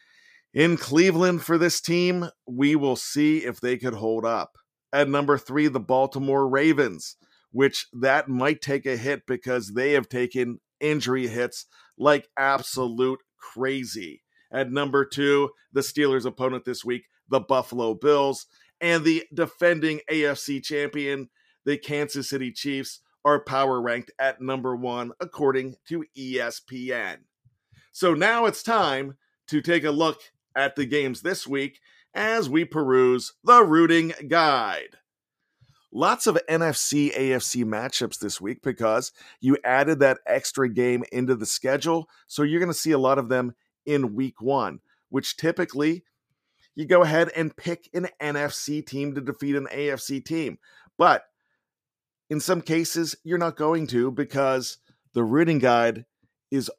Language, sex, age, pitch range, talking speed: English, male, 40-59, 130-155 Hz, 145 wpm